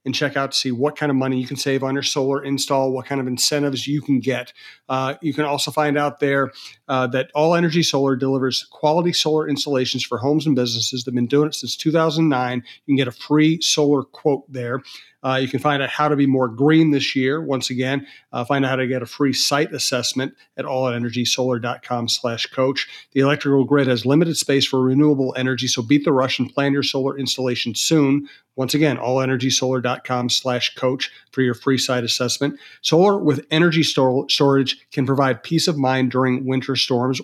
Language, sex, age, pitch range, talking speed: English, male, 40-59, 130-145 Hz, 205 wpm